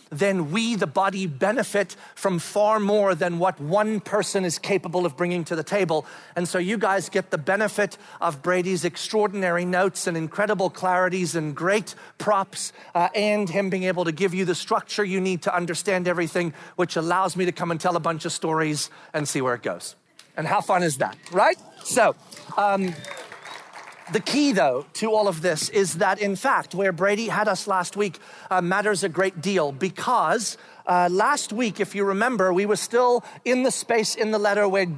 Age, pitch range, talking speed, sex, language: 40-59, 180-220 Hz, 195 wpm, male, English